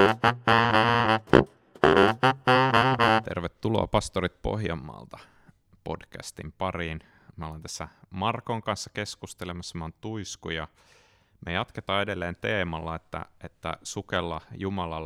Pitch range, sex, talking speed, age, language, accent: 85-105 Hz, male, 90 wpm, 30-49, Finnish, native